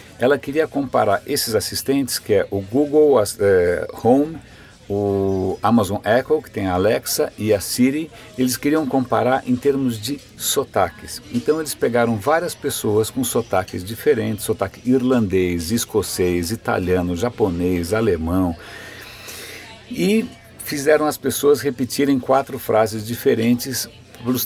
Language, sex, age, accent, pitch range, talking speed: Portuguese, male, 60-79, Brazilian, 100-135 Hz, 125 wpm